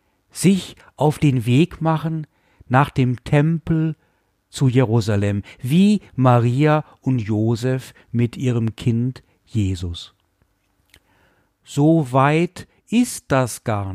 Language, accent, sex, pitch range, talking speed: German, German, male, 105-160 Hz, 100 wpm